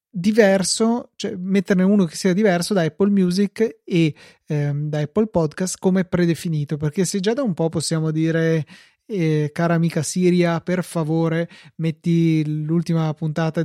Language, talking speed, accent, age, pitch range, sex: Italian, 150 wpm, native, 20-39, 160-190 Hz, male